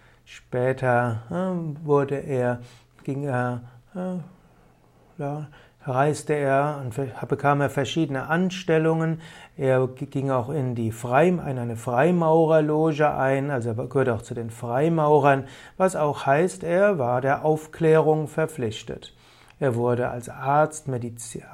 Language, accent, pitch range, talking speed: German, German, 130-160 Hz, 115 wpm